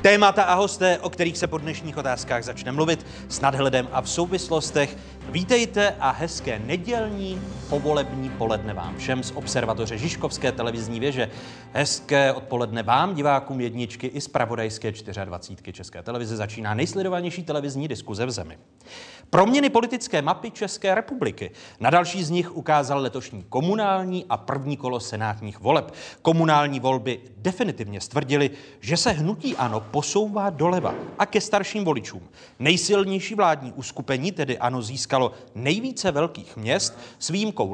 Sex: male